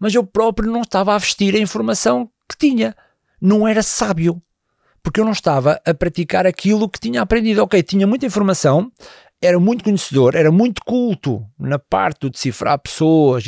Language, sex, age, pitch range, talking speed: Portuguese, male, 50-69, 140-210 Hz, 175 wpm